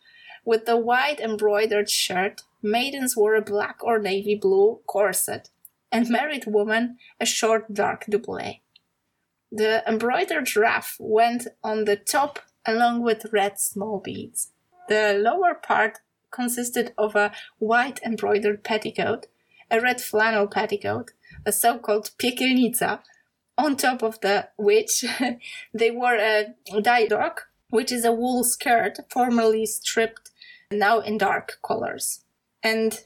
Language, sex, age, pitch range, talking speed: Polish, female, 20-39, 215-245 Hz, 125 wpm